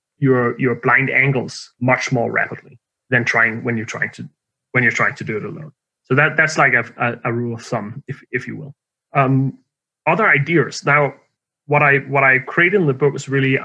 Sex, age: male, 30-49